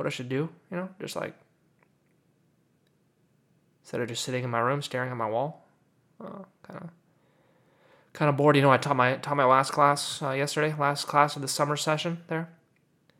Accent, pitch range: American, 145-185 Hz